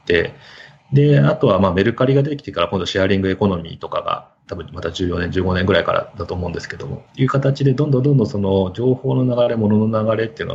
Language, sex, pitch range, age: Japanese, male, 100-140 Hz, 30-49